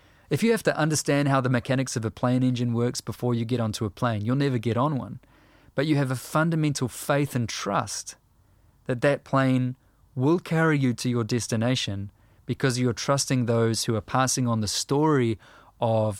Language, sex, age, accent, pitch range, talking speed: English, male, 20-39, Australian, 110-135 Hz, 195 wpm